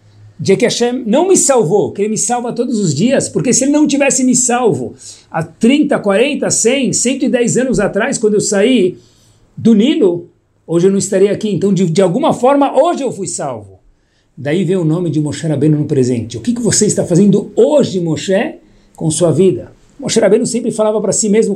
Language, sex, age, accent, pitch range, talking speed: Portuguese, male, 60-79, Brazilian, 140-200 Hz, 205 wpm